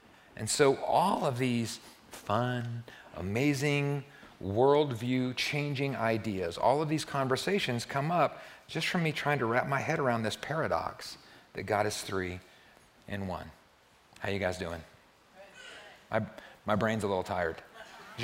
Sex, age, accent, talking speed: male, 40-59, American, 140 wpm